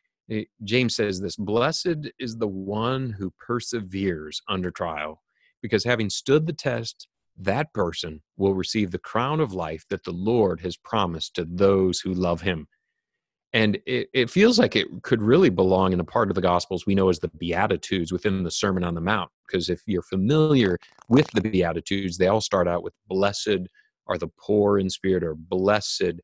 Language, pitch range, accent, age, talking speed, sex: English, 90-110 Hz, American, 30-49, 185 wpm, male